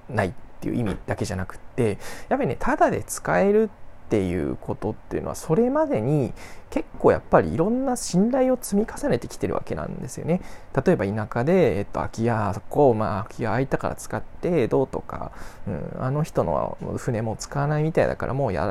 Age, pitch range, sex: 20-39, 105-160 Hz, male